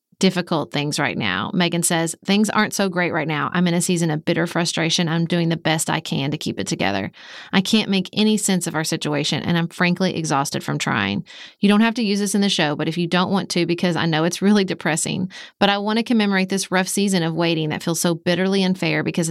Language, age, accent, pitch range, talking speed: English, 30-49, American, 165-200 Hz, 250 wpm